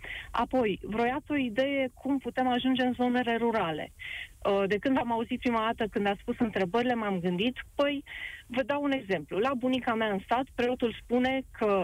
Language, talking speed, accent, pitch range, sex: Romanian, 175 wpm, native, 210-275 Hz, female